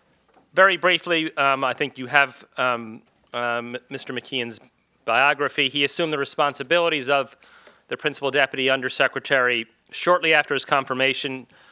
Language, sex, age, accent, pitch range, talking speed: English, male, 30-49, American, 125-150 Hz, 135 wpm